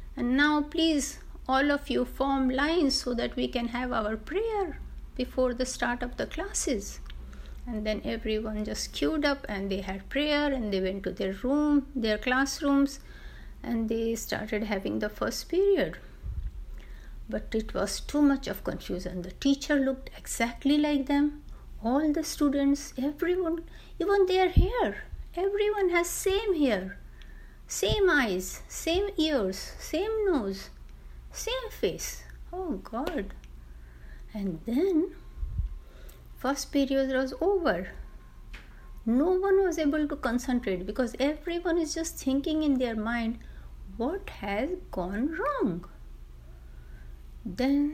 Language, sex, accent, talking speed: Hindi, female, native, 130 wpm